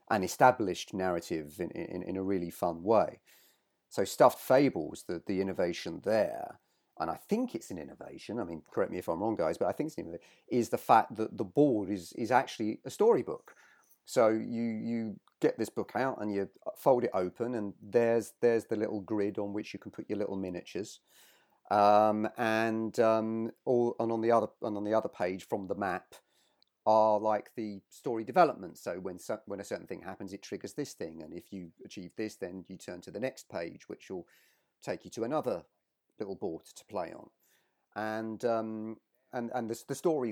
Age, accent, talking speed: 40-59, British, 200 wpm